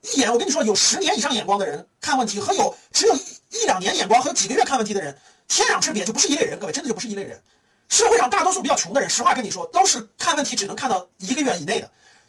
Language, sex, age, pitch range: Chinese, male, 30-49, 230-380 Hz